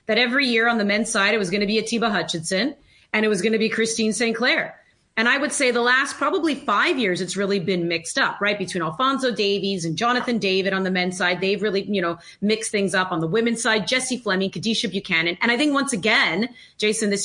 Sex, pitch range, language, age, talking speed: female, 195-235 Hz, English, 30-49, 245 wpm